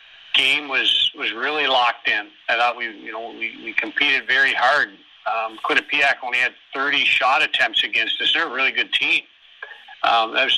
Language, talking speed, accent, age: English, 185 wpm, American, 50-69